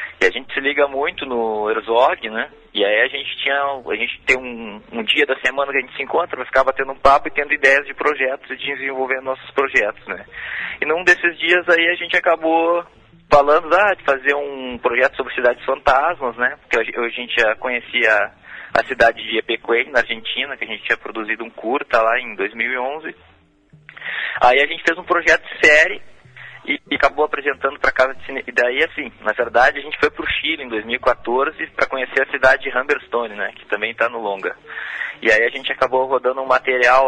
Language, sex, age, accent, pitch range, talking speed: Portuguese, male, 20-39, Brazilian, 125-150 Hz, 210 wpm